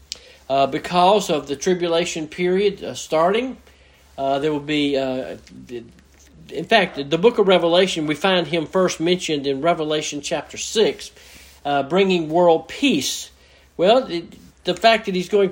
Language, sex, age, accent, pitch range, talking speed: English, male, 50-69, American, 135-175 Hz, 150 wpm